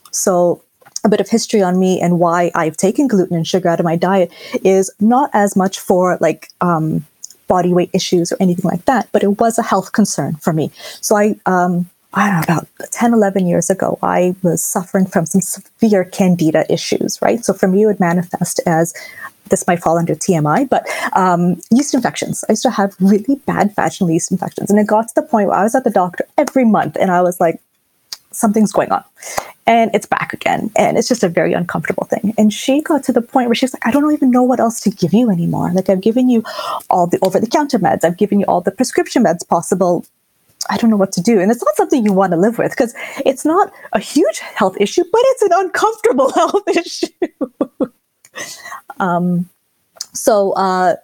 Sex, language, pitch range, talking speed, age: female, English, 180-250 Hz, 215 wpm, 30-49